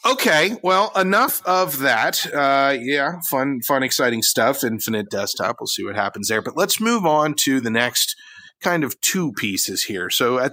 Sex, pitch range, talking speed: male, 125-195 Hz, 180 wpm